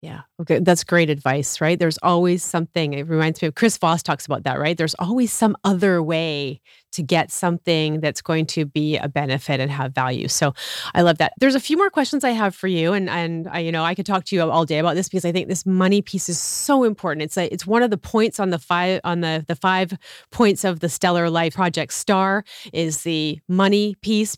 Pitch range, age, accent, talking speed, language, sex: 170-235 Hz, 30-49, American, 240 wpm, English, female